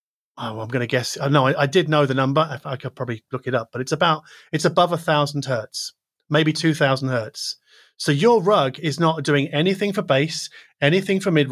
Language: English